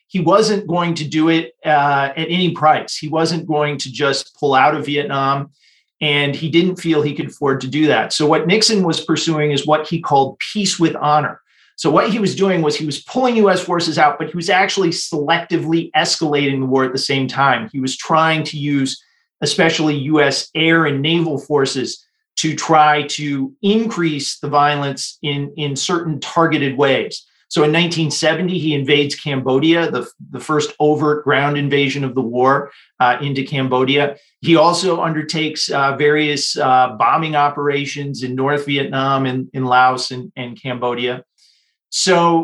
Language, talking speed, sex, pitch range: English, 175 wpm, male, 140-165 Hz